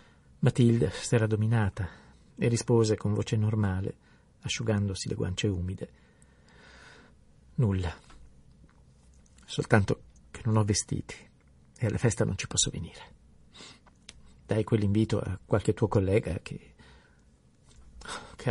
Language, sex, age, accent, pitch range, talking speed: Italian, male, 50-69, native, 80-110 Hz, 105 wpm